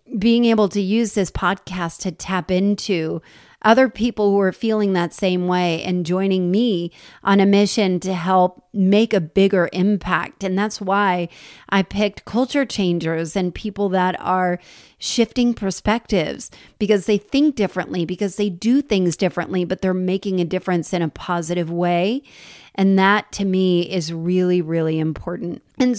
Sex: female